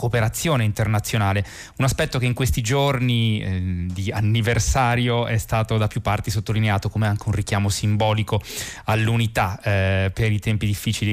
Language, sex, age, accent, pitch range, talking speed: Italian, male, 20-39, native, 105-120 Hz, 150 wpm